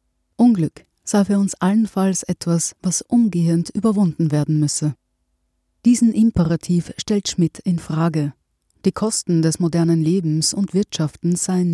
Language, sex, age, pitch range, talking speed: German, female, 30-49, 160-195 Hz, 130 wpm